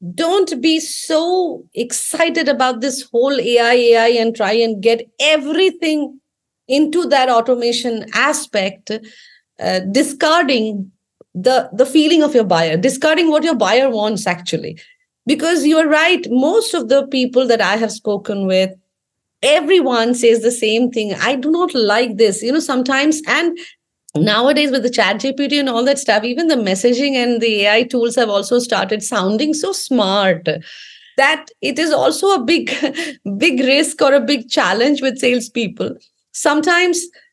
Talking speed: 155 wpm